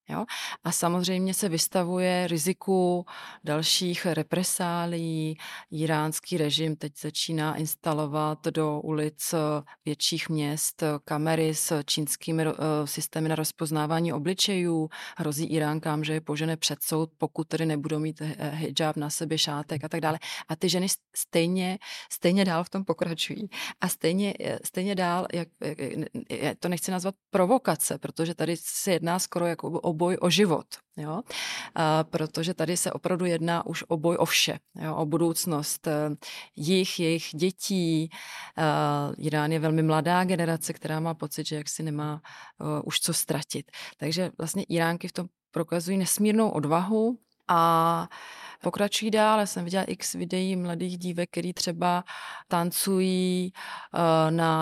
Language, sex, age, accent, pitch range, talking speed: Czech, female, 30-49, native, 155-180 Hz, 135 wpm